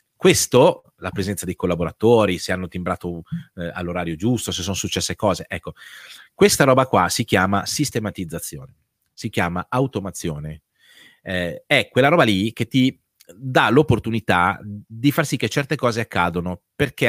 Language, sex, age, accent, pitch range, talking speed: Italian, male, 30-49, native, 90-125 Hz, 150 wpm